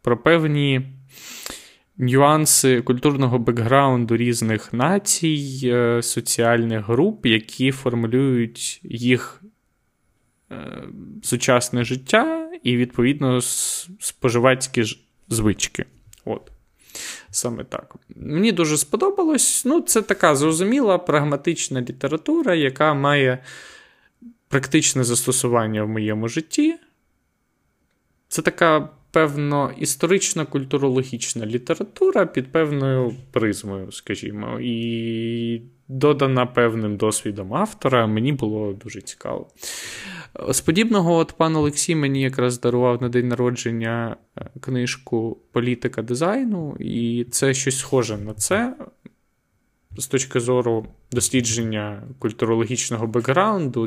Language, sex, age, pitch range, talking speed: Ukrainian, male, 20-39, 115-155 Hz, 90 wpm